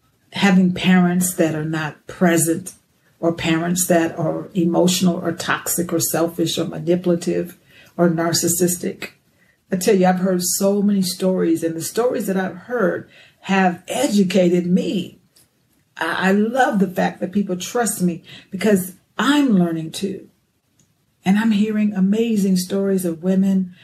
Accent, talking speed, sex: American, 140 wpm, female